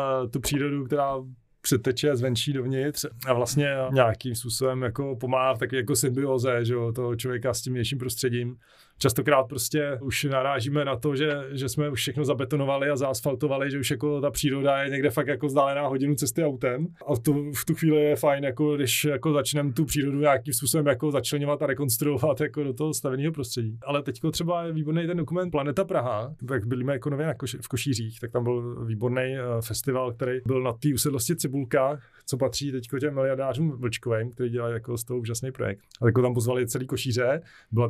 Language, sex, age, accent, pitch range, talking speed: Czech, male, 30-49, native, 125-145 Hz, 190 wpm